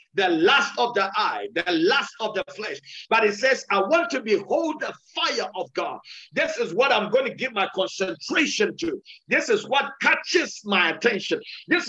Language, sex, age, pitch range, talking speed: English, male, 50-69, 205-320 Hz, 190 wpm